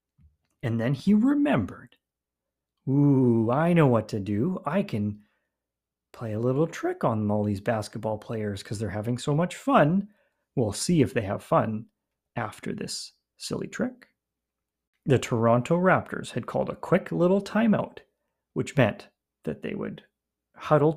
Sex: male